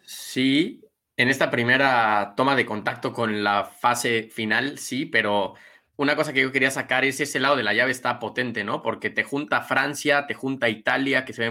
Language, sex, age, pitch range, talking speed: Spanish, male, 20-39, 115-145 Hz, 205 wpm